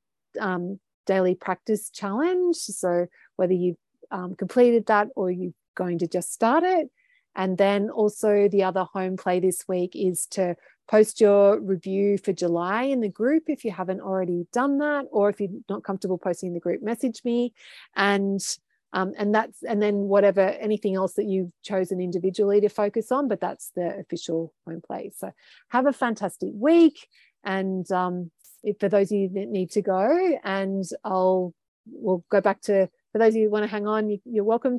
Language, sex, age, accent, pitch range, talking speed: English, female, 30-49, Australian, 185-225 Hz, 185 wpm